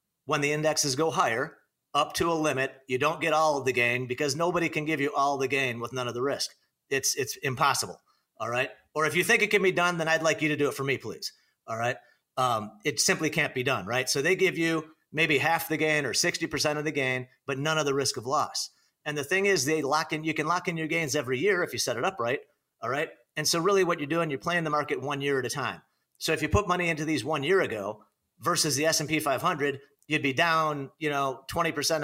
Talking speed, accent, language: 260 wpm, American, English